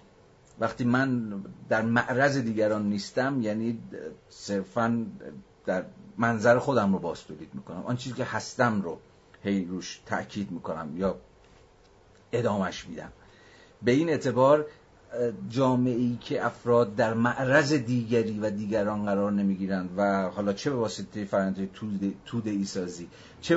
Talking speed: 120 wpm